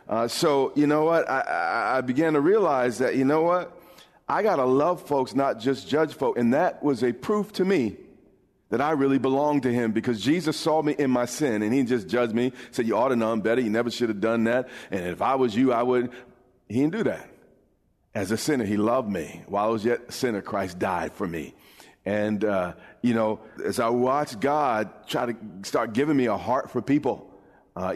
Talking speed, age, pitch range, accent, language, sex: 230 wpm, 40-59, 110-140 Hz, American, English, male